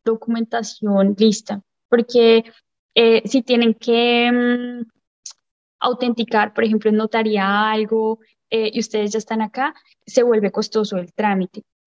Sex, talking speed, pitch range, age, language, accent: female, 120 wpm, 205-245 Hz, 10-29, Spanish, Colombian